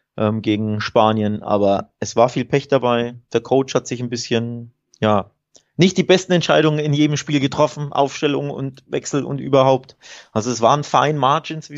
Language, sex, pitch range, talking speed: German, male, 105-140 Hz, 175 wpm